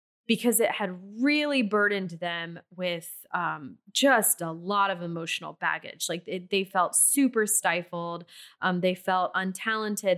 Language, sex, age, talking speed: English, female, 20-39, 140 wpm